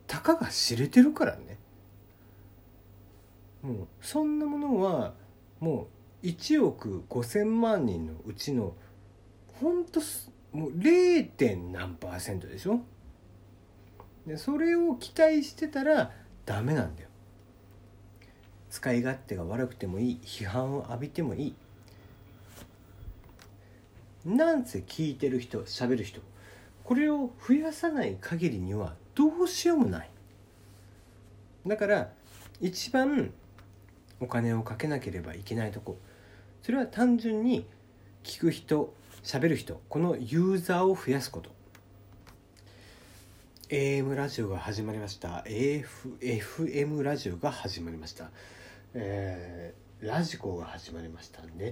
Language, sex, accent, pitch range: Japanese, male, native, 100-155 Hz